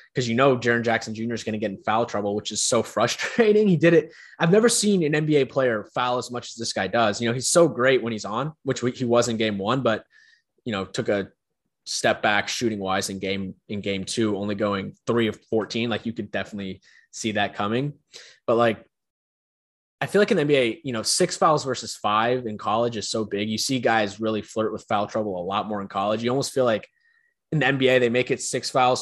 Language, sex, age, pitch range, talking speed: English, male, 20-39, 110-135 Hz, 240 wpm